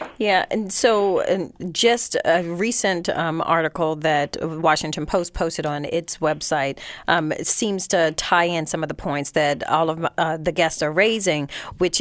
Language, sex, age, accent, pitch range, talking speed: English, female, 40-59, American, 160-200 Hz, 165 wpm